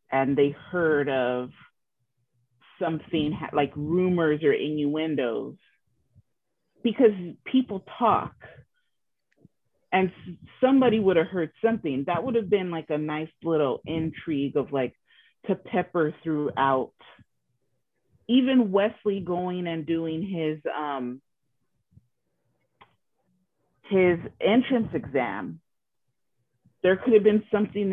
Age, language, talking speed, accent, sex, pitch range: 30-49, English, 105 wpm, American, female, 145-190 Hz